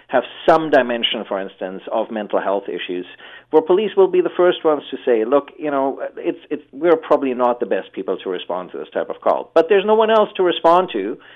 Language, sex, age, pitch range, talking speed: English, male, 40-59, 115-145 Hz, 230 wpm